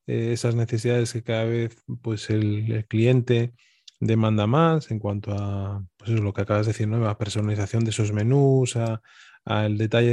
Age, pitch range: 20-39, 110-125 Hz